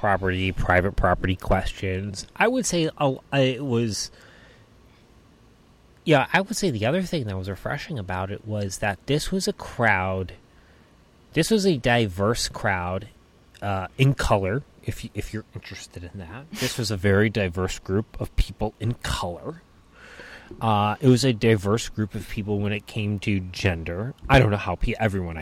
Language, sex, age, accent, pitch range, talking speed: English, male, 30-49, American, 95-130 Hz, 165 wpm